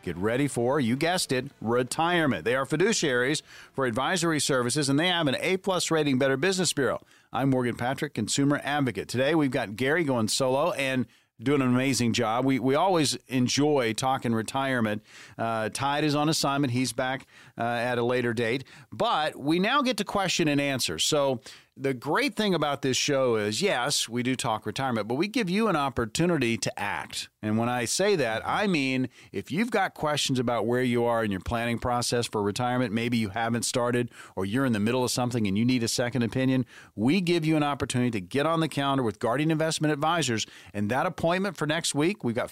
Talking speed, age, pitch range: 205 wpm, 40-59, 120-155 Hz